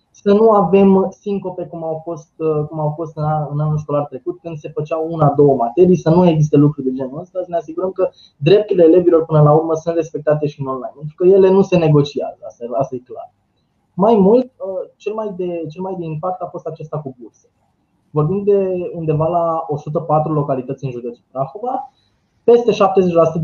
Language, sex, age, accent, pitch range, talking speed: Romanian, male, 20-39, native, 145-180 Hz, 190 wpm